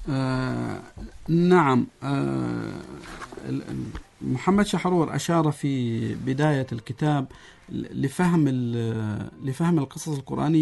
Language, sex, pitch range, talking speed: Arabic, male, 130-160 Hz, 75 wpm